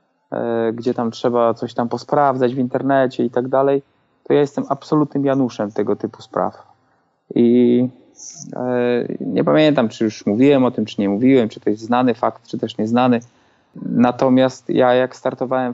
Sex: male